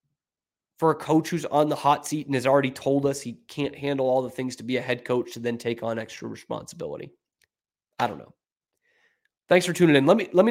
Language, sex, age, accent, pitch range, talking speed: English, male, 20-39, American, 120-150 Hz, 235 wpm